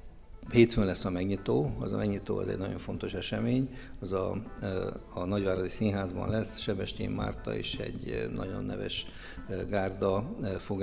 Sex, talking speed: male, 145 wpm